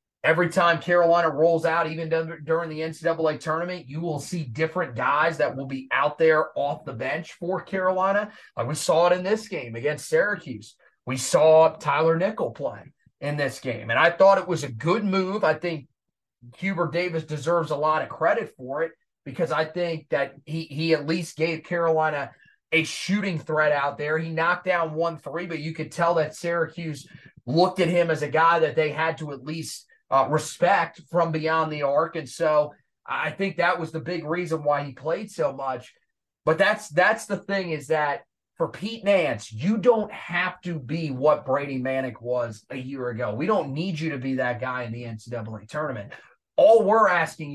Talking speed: 200 wpm